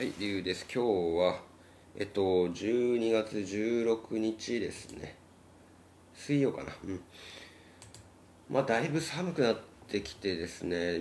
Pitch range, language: 90-115 Hz, Japanese